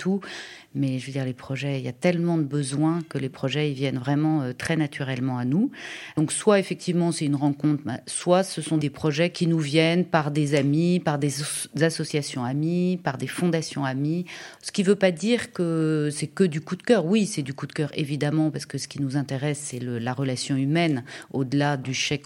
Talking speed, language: 220 wpm, French